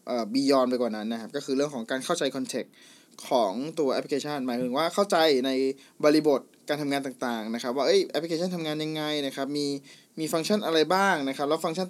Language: Thai